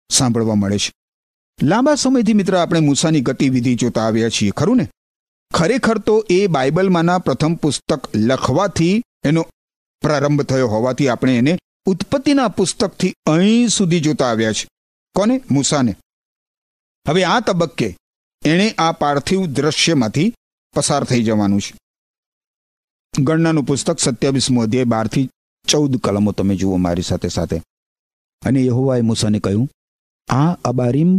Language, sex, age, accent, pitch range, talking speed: Gujarati, male, 50-69, native, 105-155 Hz, 125 wpm